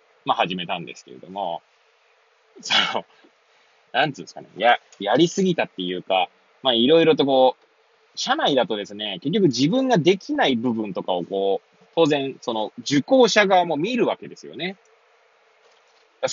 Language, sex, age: Japanese, male, 20-39